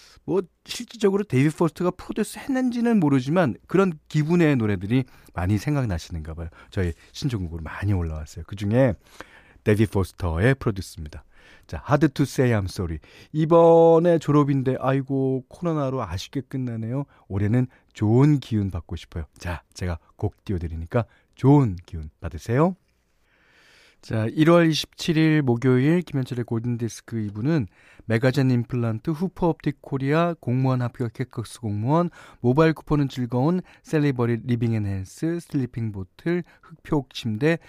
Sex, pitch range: male, 105-155 Hz